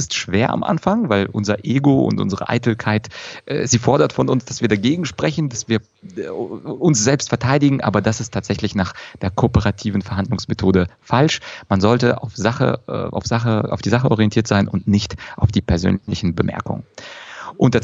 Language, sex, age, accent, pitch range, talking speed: German, male, 30-49, German, 105-135 Hz, 180 wpm